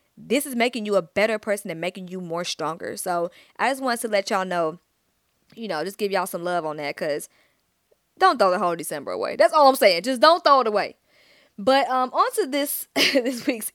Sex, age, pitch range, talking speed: female, 20-39, 180-230 Hz, 225 wpm